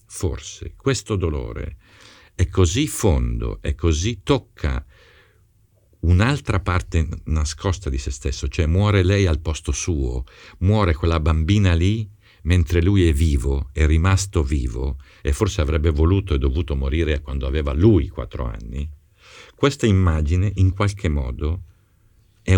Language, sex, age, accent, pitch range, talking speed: Italian, male, 50-69, native, 75-100 Hz, 135 wpm